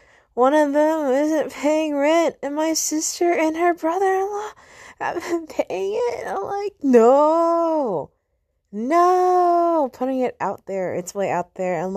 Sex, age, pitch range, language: female, 20-39, 195-280 Hz, English